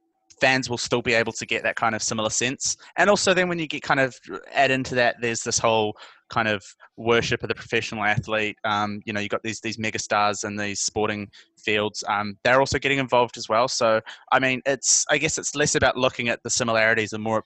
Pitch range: 110-125 Hz